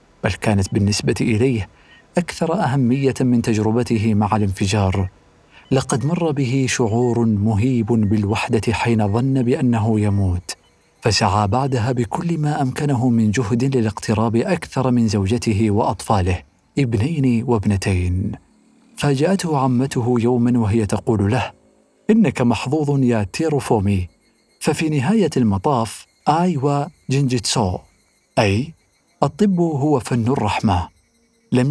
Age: 50-69